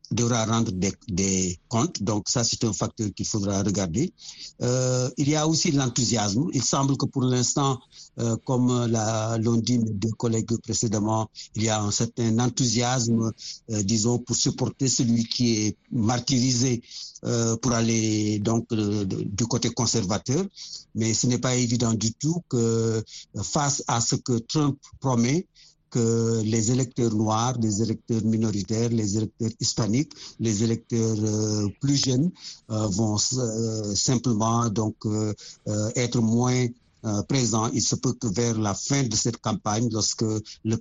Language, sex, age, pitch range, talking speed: French, male, 60-79, 105-125 Hz, 155 wpm